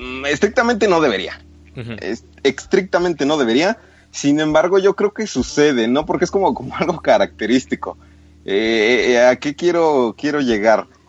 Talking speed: 140 wpm